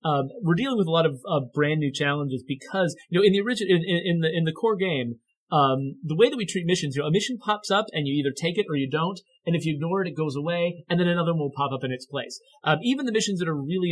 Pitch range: 145-185 Hz